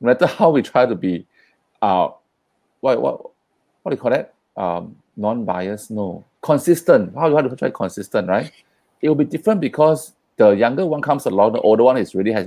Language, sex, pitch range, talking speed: English, male, 95-125 Hz, 200 wpm